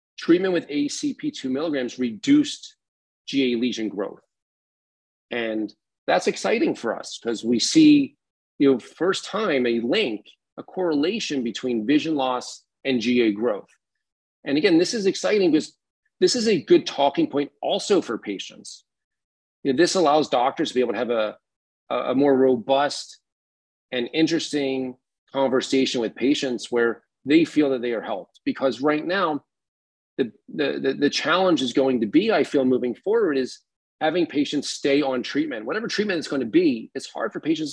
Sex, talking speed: male, 160 wpm